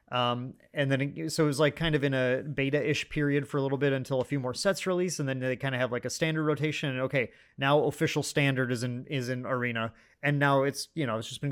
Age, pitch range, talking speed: 30-49, 125-150 Hz, 275 wpm